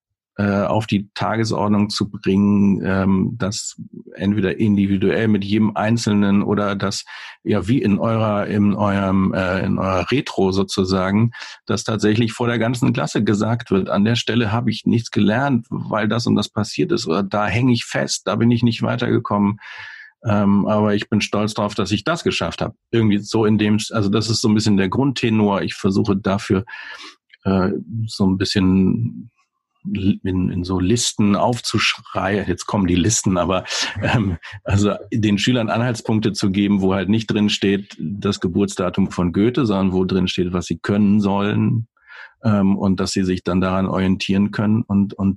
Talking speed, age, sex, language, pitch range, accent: 170 wpm, 50-69, male, German, 95-110 Hz, German